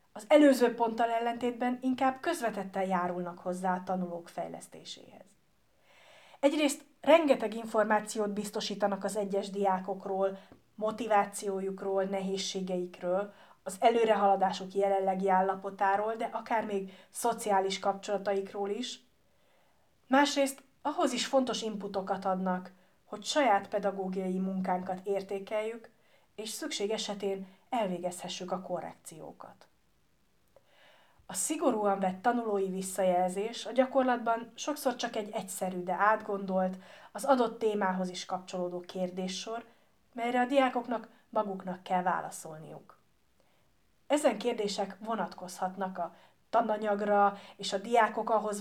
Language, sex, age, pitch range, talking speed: Hungarian, female, 30-49, 190-225 Hz, 100 wpm